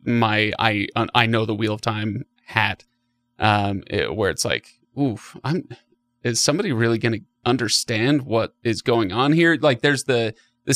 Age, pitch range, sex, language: 30-49, 115-135 Hz, male, English